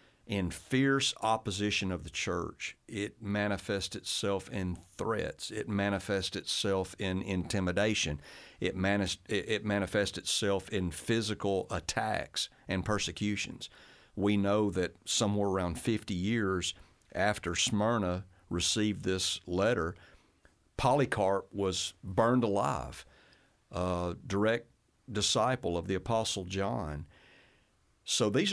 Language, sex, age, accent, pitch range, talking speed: English, male, 50-69, American, 90-110 Hz, 105 wpm